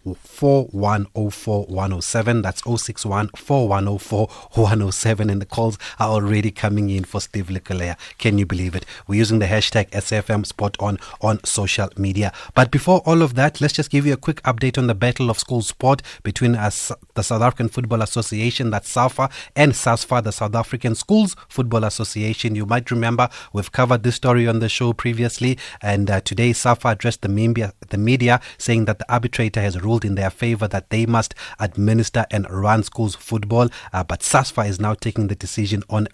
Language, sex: English, male